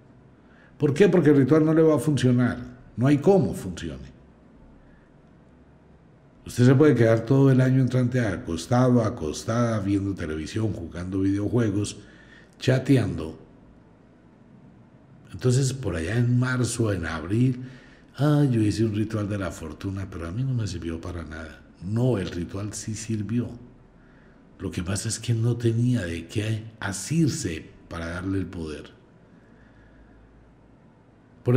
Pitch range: 100-145 Hz